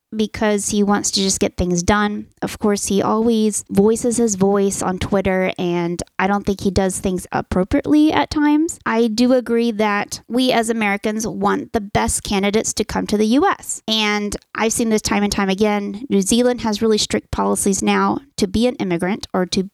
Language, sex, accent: English, female, American